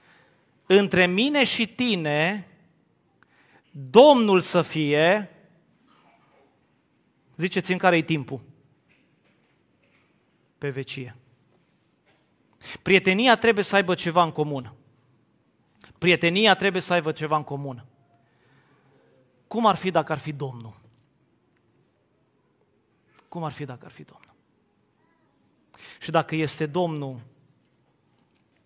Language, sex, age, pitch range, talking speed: Romanian, male, 30-49, 140-180 Hz, 95 wpm